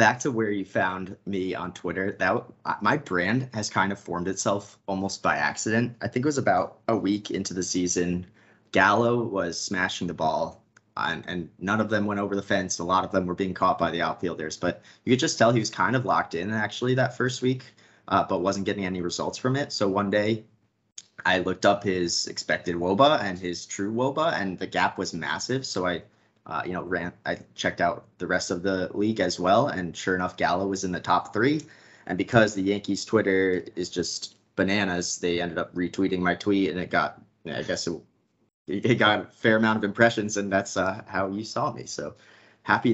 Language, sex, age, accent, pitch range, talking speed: English, male, 20-39, American, 95-110 Hz, 215 wpm